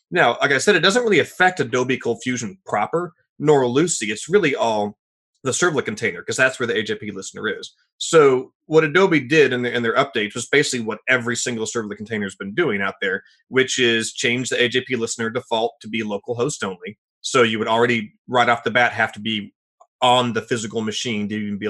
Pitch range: 110-155 Hz